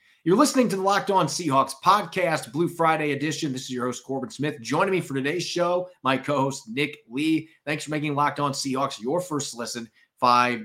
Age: 30-49